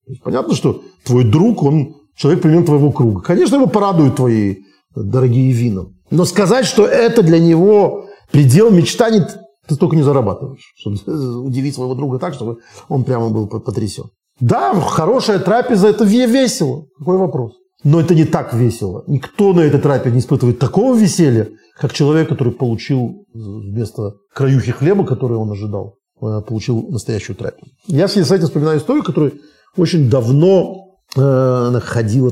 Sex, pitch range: male, 115-165 Hz